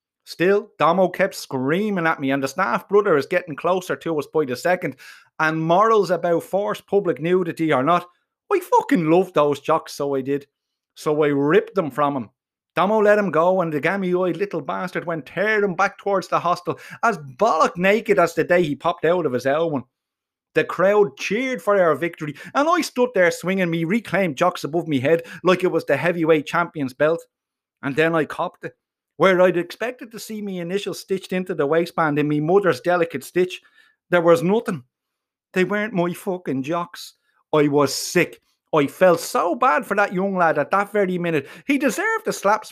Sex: male